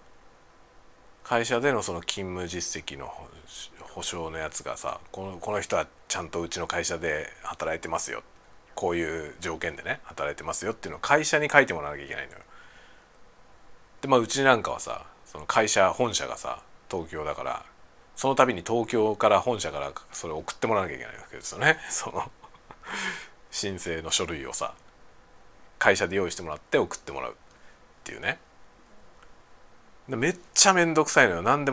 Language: Japanese